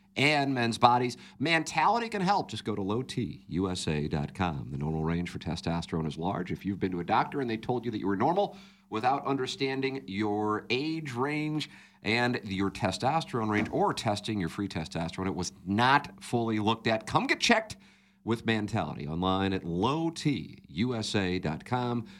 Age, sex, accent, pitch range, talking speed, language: 50-69, male, American, 100-140 Hz, 160 wpm, English